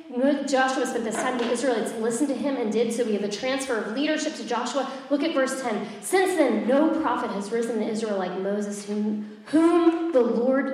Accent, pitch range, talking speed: American, 200-245 Hz, 210 wpm